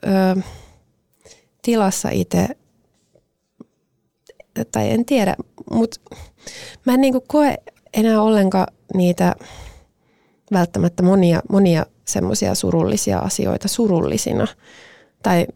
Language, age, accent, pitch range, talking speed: Finnish, 20-39, native, 175-210 Hz, 80 wpm